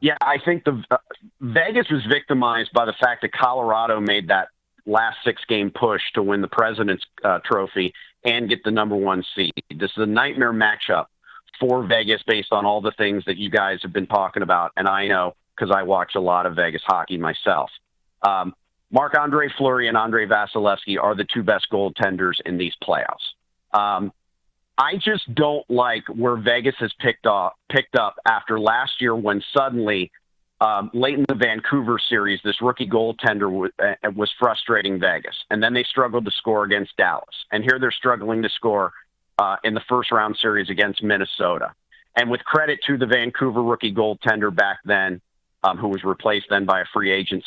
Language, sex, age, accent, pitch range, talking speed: English, male, 40-59, American, 100-125 Hz, 180 wpm